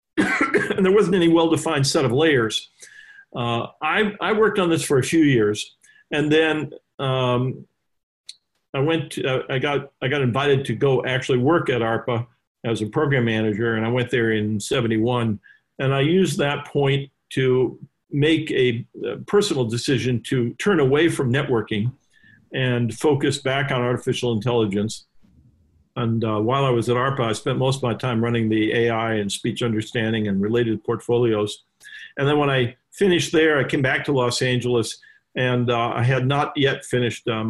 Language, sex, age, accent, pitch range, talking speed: English, male, 50-69, American, 115-140 Hz, 175 wpm